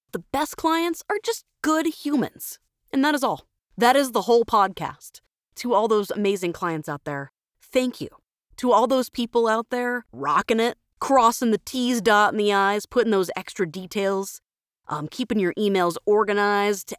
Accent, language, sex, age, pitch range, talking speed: American, English, female, 30-49, 190-260 Hz, 170 wpm